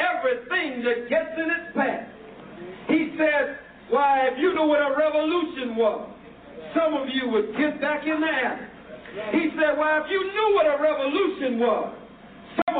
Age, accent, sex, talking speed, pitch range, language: 50-69, American, male, 170 wpm, 255-310 Hz, English